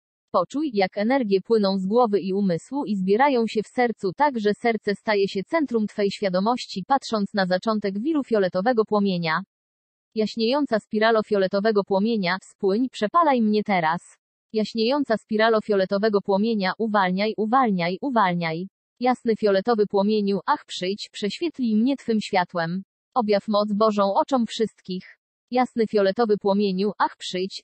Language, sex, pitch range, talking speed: English, female, 195-230 Hz, 130 wpm